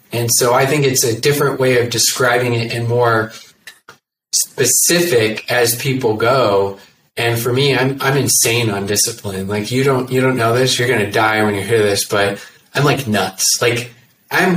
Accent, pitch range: American, 120-160 Hz